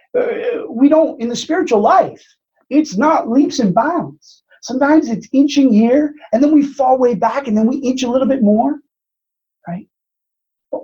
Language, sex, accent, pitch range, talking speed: English, male, American, 195-265 Hz, 170 wpm